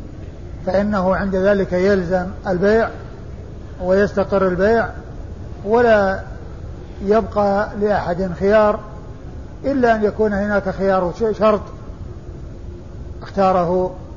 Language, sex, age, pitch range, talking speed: Arabic, male, 50-69, 175-205 Hz, 75 wpm